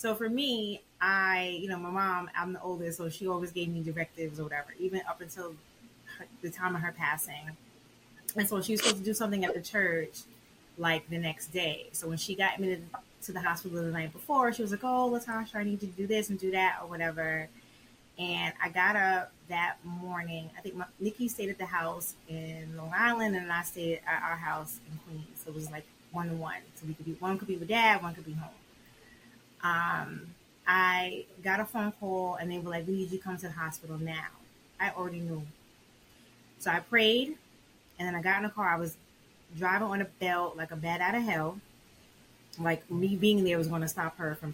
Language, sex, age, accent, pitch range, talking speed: English, female, 20-39, American, 165-195 Hz, 220 wpm